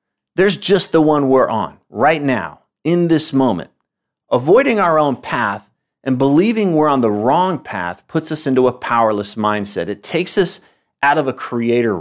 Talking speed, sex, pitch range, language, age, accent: 175 wpm, male, 120-160 Hz, English, 30-49, American